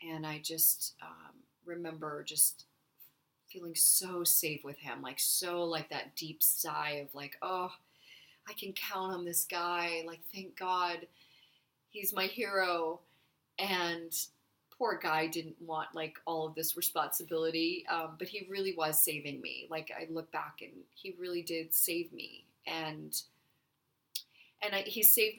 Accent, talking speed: American, 150 wpm